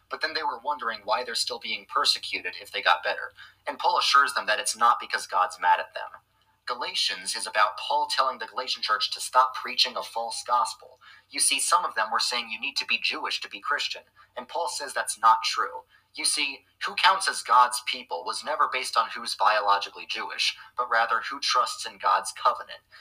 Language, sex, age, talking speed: English, male, 30-49, 215 wpm